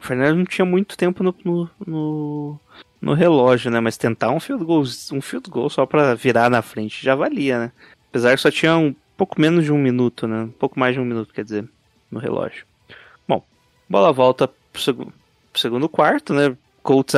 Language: Portuguese